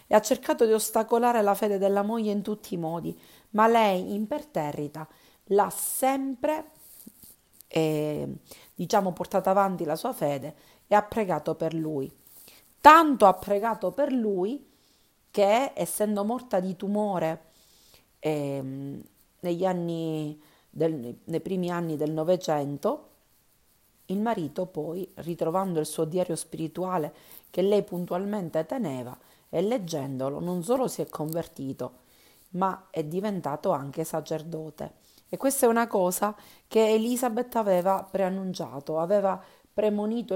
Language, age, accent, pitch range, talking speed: Italian, 40-59, native, 155-205 Hz, 125 wpm